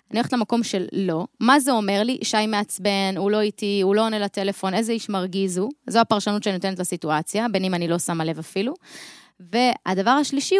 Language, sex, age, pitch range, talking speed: Hebrew, female, 20-39, 185-255 Hz, 205 wpm